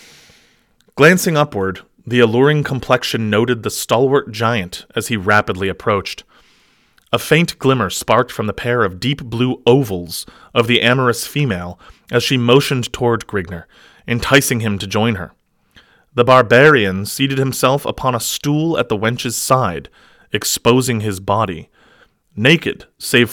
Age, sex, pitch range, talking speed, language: 30-49, male, 105-135 Hz, 140 wpm, English